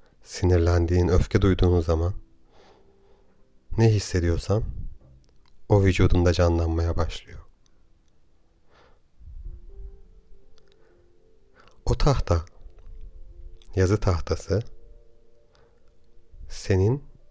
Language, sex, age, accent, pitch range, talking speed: Turkish, male, 40-59, native, 85-100 Hz, 50 wpm